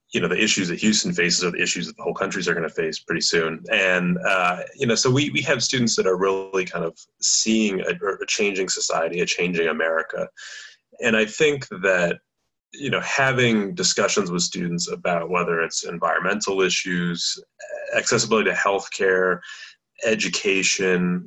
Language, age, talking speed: English, 30-49, 170 wpm